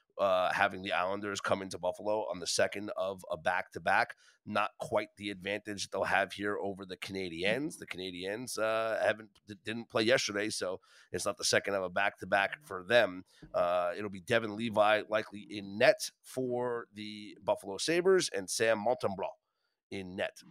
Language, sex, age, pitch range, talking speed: English, male, 30-49, 105-135 Hz, 160 wpm